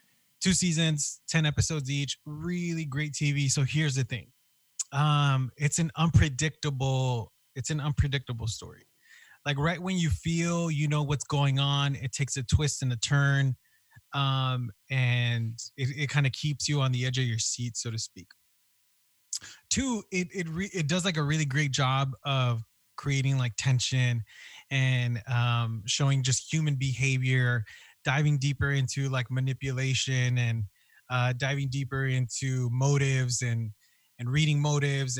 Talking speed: 155 wpm